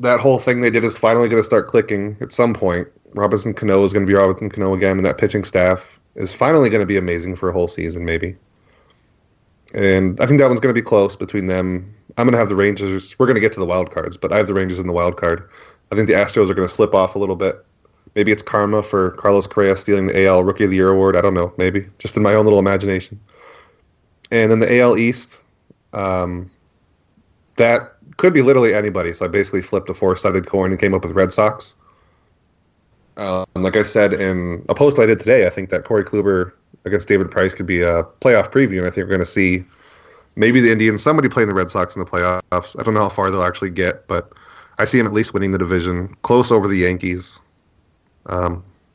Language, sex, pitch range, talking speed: English, male, 90-105 Hz, 240 wpm